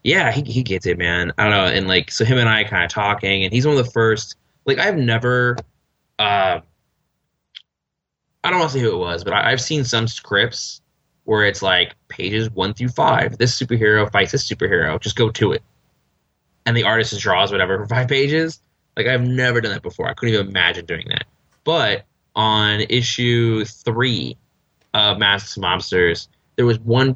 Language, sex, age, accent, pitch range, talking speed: English, male, 20-39, American, 100-125 Hz, 200 wpm